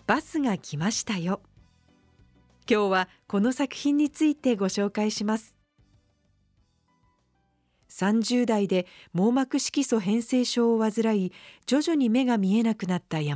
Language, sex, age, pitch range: Japanese, female, 40-59, 190-265 Hz